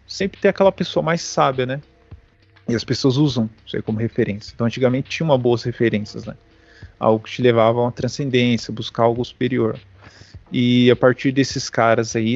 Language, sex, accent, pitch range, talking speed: Portuguese, male, Brazilian, 115-150 Hz, 185 wpm